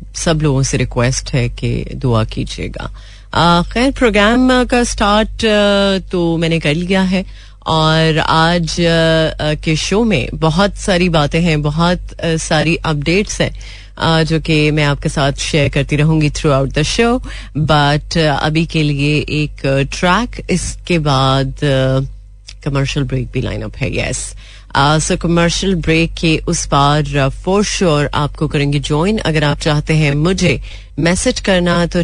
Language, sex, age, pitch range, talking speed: Hindi, female, 30-49, 135-175 Hz, 140 wpm